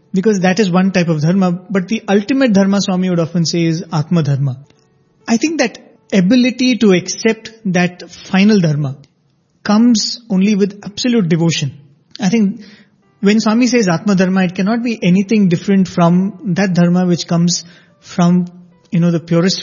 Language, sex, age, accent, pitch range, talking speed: English, male, 30-49, Indian, 160-205 Hz, 165 wpm